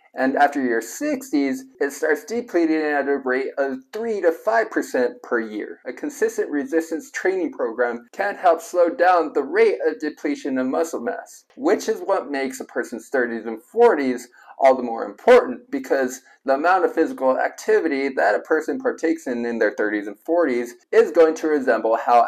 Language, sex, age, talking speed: English, male, 20-39, 180 wpm